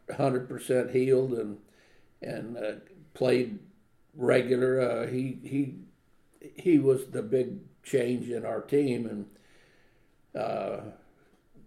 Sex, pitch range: male, 125-140 Hz